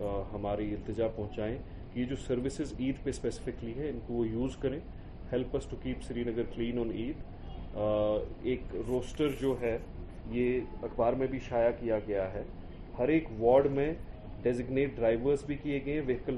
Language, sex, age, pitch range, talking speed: Urdu, male, 30-49, 110-130 Hz, 175 wpm